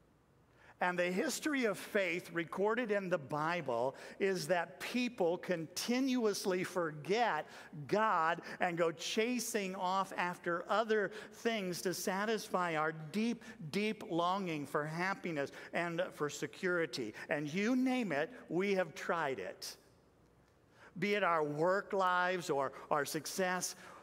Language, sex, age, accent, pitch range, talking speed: English, male, 50-69, American, 155-195 Hz, 120 wpm